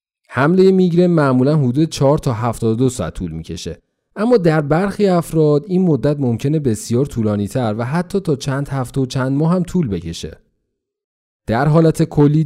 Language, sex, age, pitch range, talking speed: Persian, male, 30-49, 110-165 Hz, 165 wpm